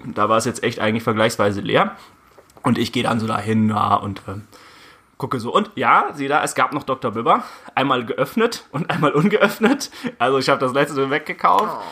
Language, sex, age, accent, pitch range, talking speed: German, male, 30-49, German, 115-165 Hz, 195 wpm